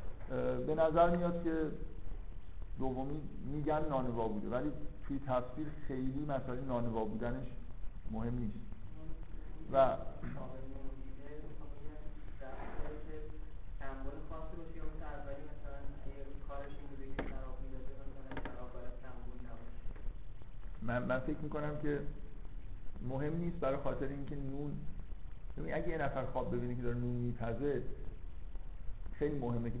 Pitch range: 110-145 Hz